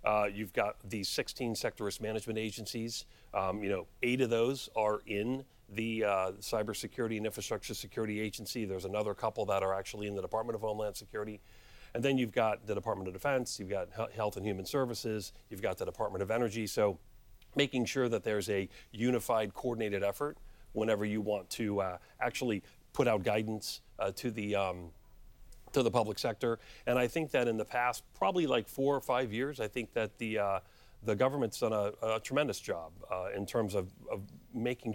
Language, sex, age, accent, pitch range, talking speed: English, male, 40-59, American, 100-120 Hz, 195 wpm